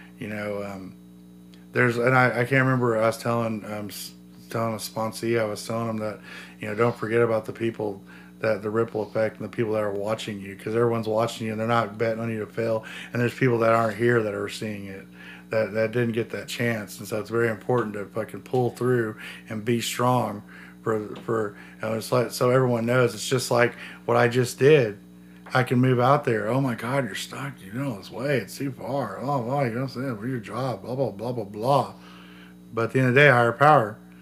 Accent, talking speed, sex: American, 235 wpm, male